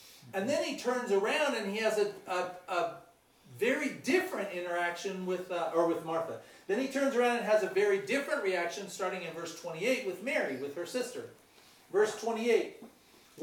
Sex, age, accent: male, 40-59, American